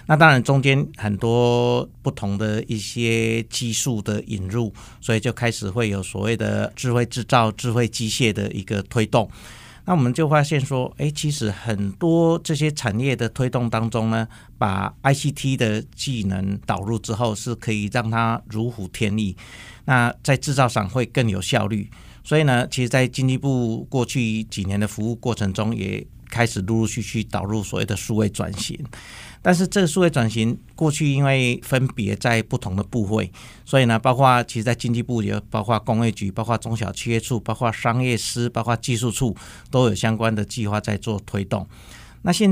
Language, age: Chinese, 50-69